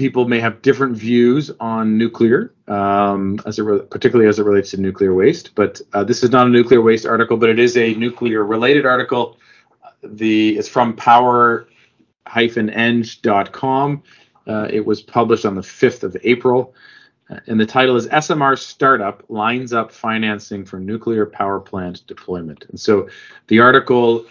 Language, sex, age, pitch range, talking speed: English, male, 40-59, 105-120 Hz, 160 wpm